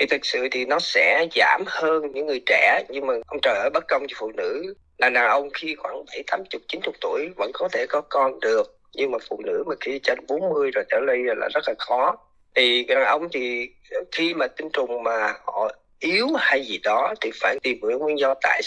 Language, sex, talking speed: Vietnamese, male, 240 wpm